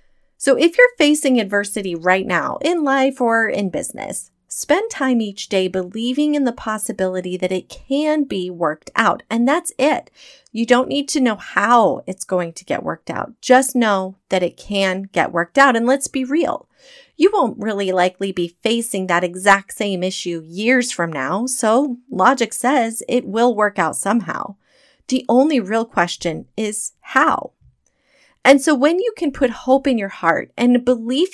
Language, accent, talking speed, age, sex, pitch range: English, American, 175 wpm, 30-49, female, 190-255 Hz